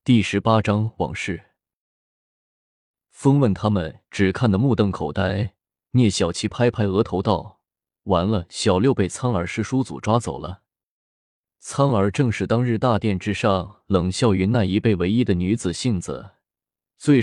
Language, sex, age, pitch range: Chinese, male, 20-39, 95-115 Hz